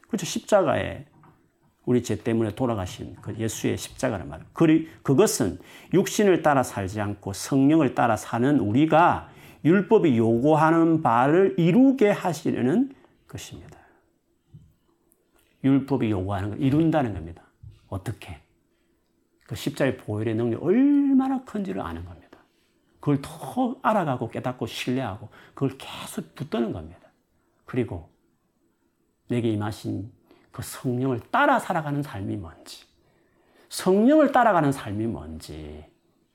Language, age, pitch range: Korean, 40-59, 105-165 Hz